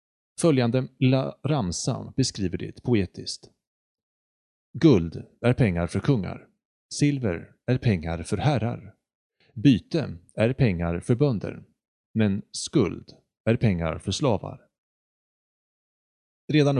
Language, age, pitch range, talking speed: Swedish, 30-49, 95-135 Hz, 100 wpm